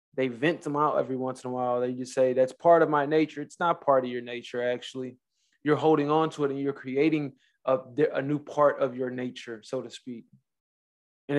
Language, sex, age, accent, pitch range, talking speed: English, male, 20-39, American, 130-150 Hz, 225 wpm